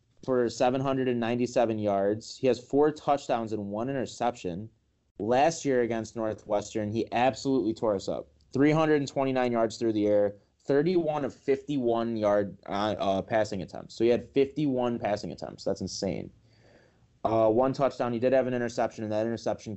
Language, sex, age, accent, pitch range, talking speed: English, male, 20-39, American, 105-125 Hz, 150 wpm